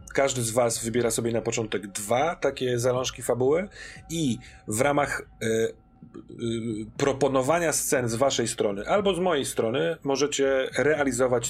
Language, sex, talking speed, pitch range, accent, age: Polish, male, 140 wpm, 115-135 Hz, native, 40-59